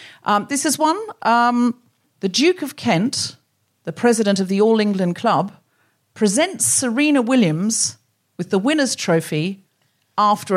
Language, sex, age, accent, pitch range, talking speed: English, female, 40-59, British, 190-265 Hz, 135 wpm